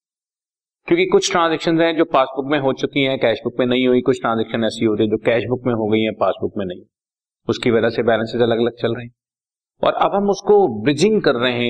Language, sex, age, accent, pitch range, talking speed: Hindi, male, 40-59, native, 120-170 Hz, 230 wpm